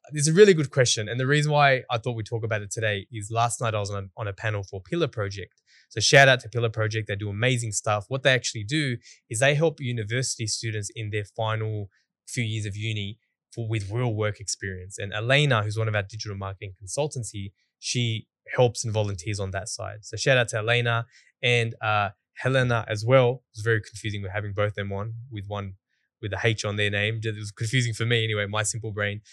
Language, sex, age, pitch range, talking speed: English, male, 10-29, 105-125 Hz, 225 wpm